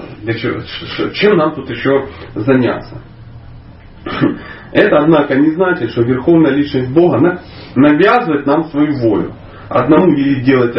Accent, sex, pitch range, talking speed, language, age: native, male, 115-170 Hz, 110 wpm, Russian, 30-49